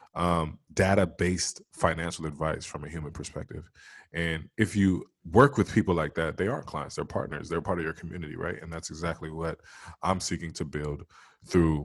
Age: 20-39